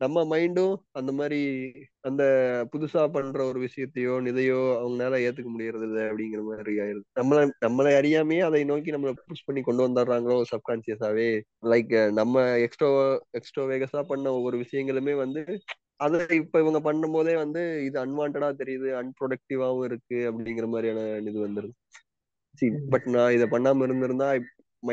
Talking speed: 130 wpm